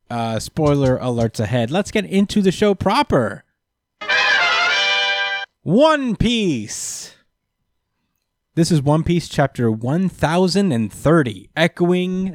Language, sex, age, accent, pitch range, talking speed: English, male, 20-39, American, 115-160 Hz, 90 wpm